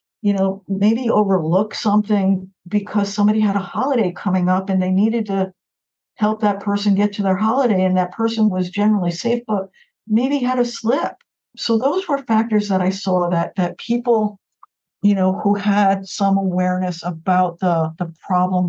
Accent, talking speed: American, 175 wpm